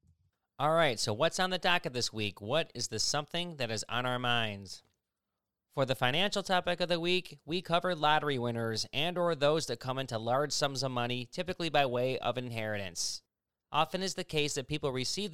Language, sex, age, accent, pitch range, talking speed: English, male, 30-49, American, 115-150 Hz, 200 wpm